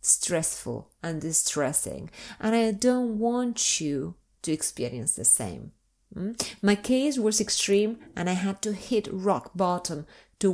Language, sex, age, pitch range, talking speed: English, female, 30-49, 165-220 Hz, 140 wpm